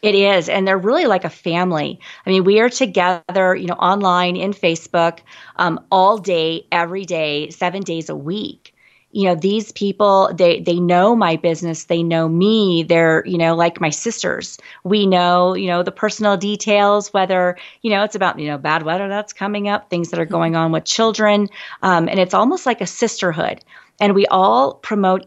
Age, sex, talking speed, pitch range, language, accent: 30-49, female, 195 wpm, 175-210 Hz, English, American